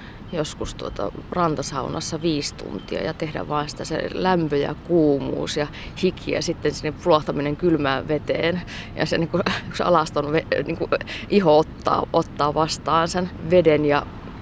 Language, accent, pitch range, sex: Finnish, native, 150-185 Hz, female